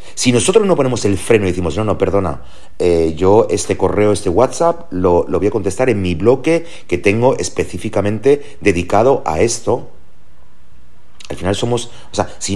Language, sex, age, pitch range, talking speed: Spanish, male, 30-49, 90-120 Hz, 175 wpm